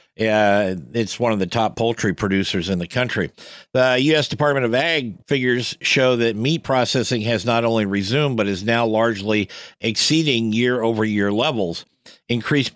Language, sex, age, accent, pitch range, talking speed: English, male, 50-69, American, 100-120 Hz, 165 wpm